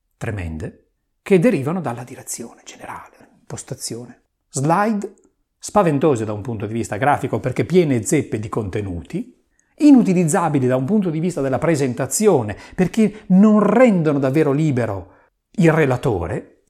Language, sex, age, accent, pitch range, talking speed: Italian, male, 40-59, native, 120-190 Hz, 125 wpm